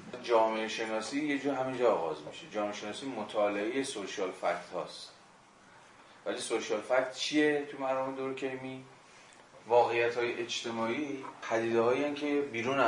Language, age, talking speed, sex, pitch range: Persian, 30-49, 130 wpm, male, 100-125 Hz